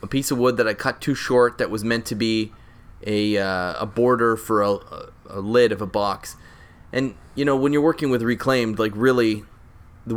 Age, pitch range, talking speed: 20-39, 105-130 Hz, 210 wpm